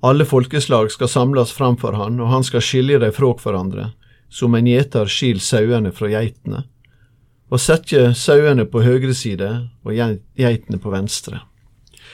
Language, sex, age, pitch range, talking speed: English, male, 40-59, 115-130 Hz, 150 wpm